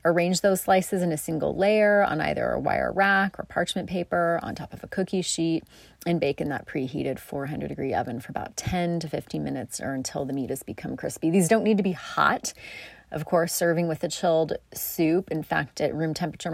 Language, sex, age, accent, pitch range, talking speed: English, female, 30-49, American, 160-220 Hz, 220 wpm